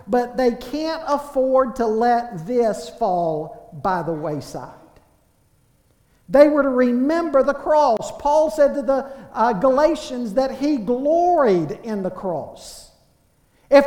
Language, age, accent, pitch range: English, 50-69, American, 200-285 Hz